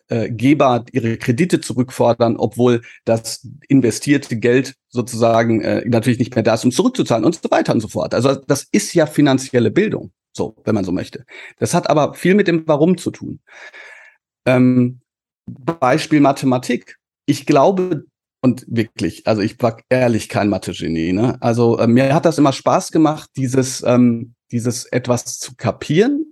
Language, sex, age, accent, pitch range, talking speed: German, male, 40-59, German, 115-145 Hz, 160 wpm